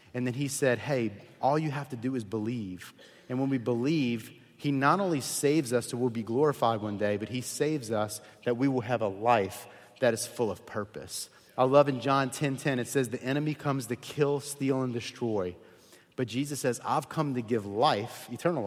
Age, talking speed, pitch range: 30-49, 215 wpm, 115-140 Hz